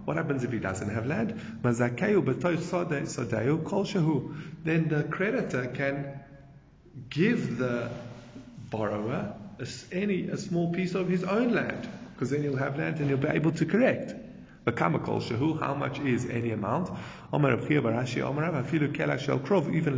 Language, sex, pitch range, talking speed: English, male, 120-160 Hz, 120 wpm